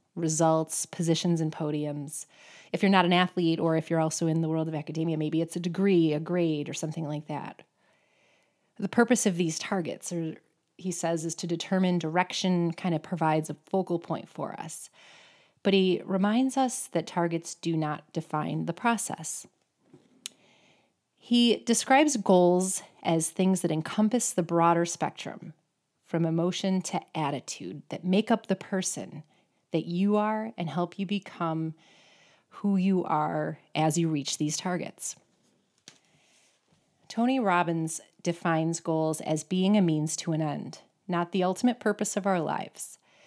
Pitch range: 160-195 Hz